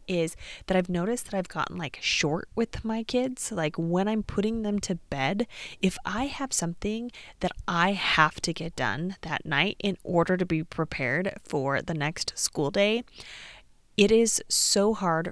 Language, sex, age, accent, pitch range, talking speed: English, female, 20-39, American, 160-200 Hz, 175 wpm